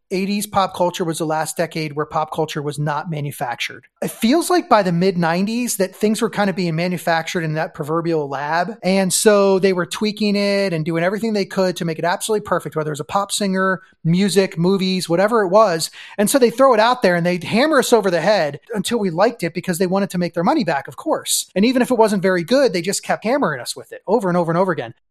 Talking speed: 255 wpm